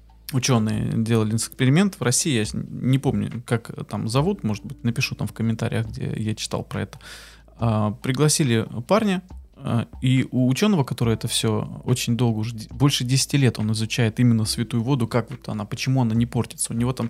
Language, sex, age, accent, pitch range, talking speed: Russian, male, 20-39, native, 115-135 Hz, 180 wpm